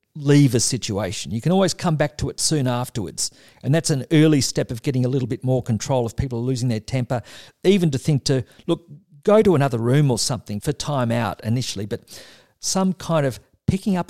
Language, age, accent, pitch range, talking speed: English, 50-69, Australian, 125-170 Hz, 215 wpm